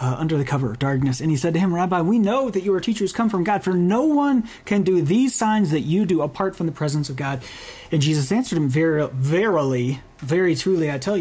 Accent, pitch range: American, 145-195 Hz